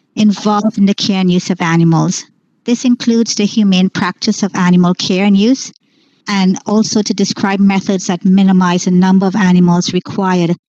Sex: male